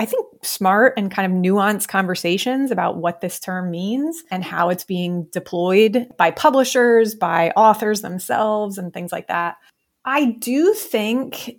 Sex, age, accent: female, 30-49, American